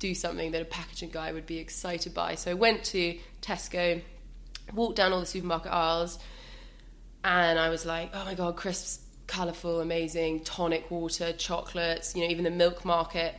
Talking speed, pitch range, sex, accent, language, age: 180 wpm, 165-185 Hz, female, British, English, 20-39